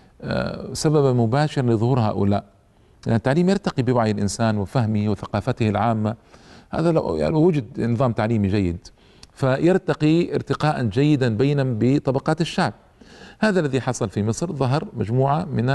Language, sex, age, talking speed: Arabic, male, 50-69, 120 wpm